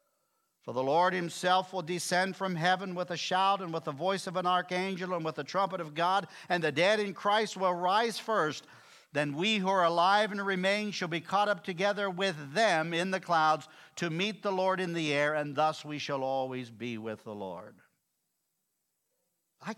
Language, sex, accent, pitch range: English, male, American, 130-185 Hz